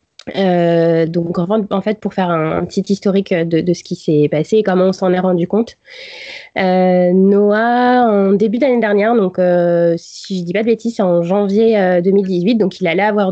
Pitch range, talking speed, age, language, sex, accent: 175-210 Hz, 205 wpm, 20-39, English, female, French